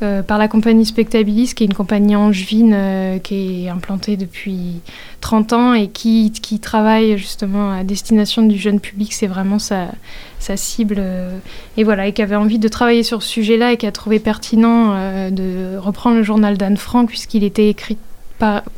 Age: 20-39